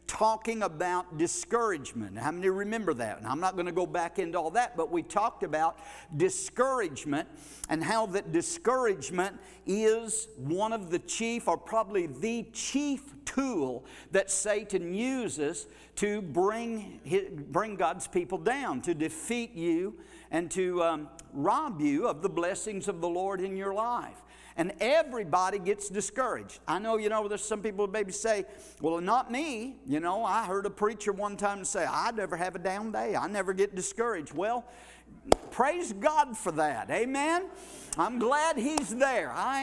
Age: 50-69